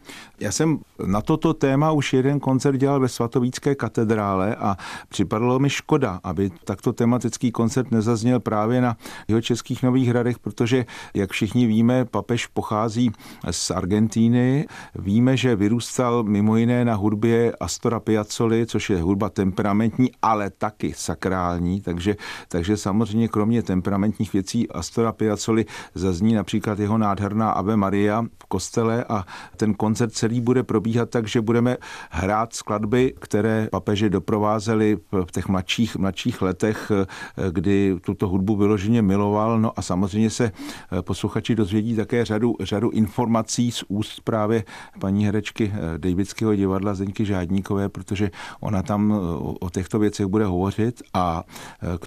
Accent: native